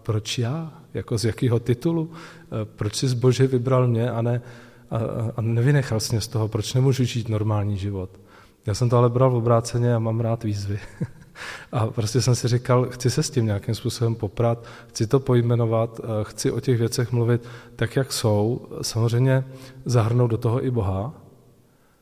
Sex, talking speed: male, 175 wpm